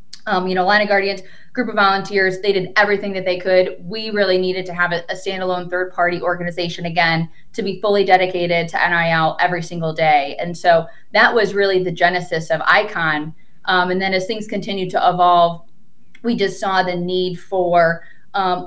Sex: female